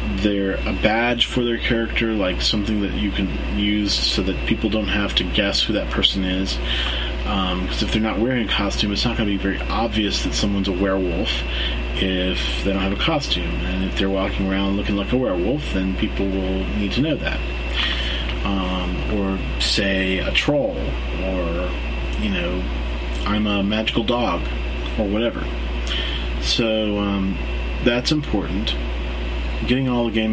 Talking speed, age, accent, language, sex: 170 wpm, 30-49, American, English, male